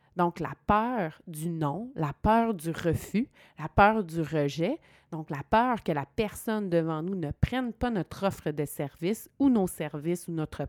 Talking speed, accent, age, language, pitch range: 185 wpm, Canadian, 30-49, French, 160-215 Hz